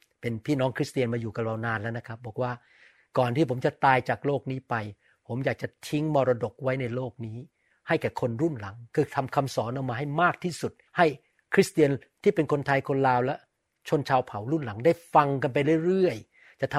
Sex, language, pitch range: male, Thai, 130-170 Hz